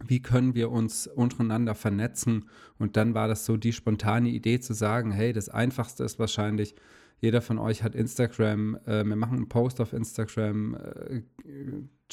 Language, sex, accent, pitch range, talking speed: German, male, German, 105-120 Hz, 170 wpm